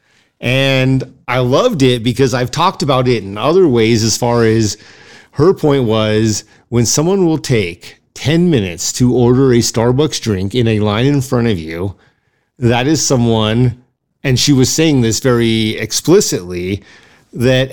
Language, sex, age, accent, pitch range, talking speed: English, male, 40-59, American, 115-145 Hz, 160 wpm